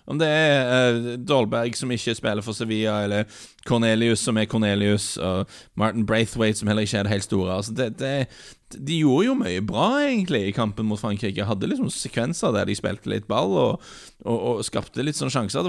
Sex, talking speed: male, 205 wpm